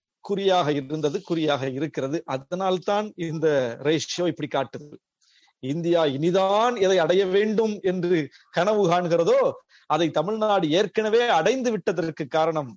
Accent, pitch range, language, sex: native, 165-215 Hz, Tamil, male